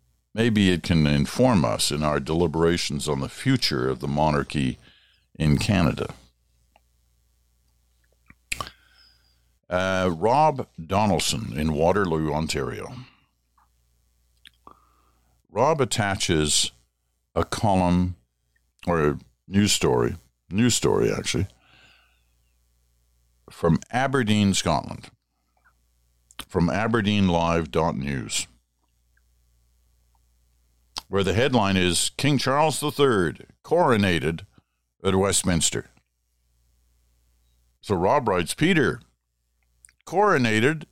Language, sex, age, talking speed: English, male, 60-79, 80 wpm